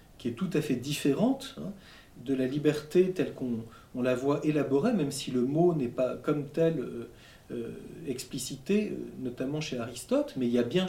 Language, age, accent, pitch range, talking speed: French, 40-59, French, 130-180 Hz, 185 wpm